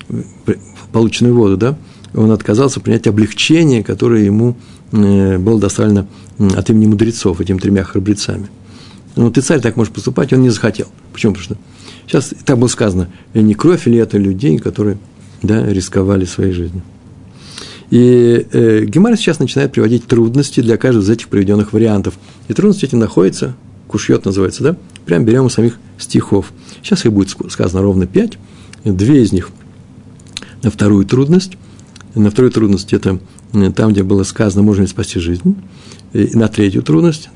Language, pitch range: Russian, 100-120 Hz